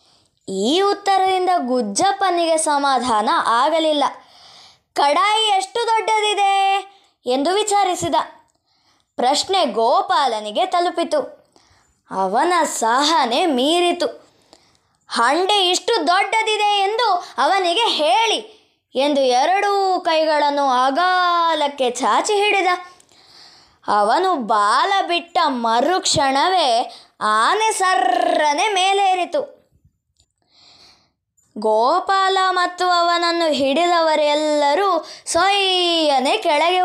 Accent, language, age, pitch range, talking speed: native, Kannada, 20-39, 285-380 Hz, 65 wpm